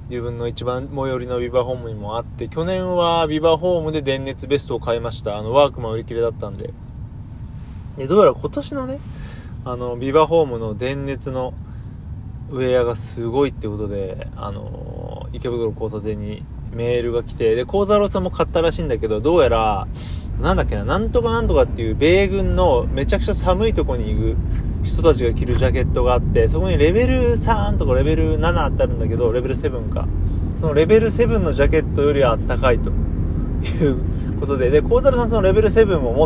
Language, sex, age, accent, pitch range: Japanese, male, 20-39, native, 110-145 Hz